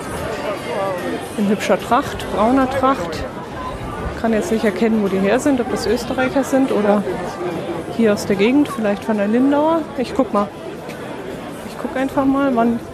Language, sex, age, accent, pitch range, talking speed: German, female, 30-49, German, 210-270 Hz, 160 wpm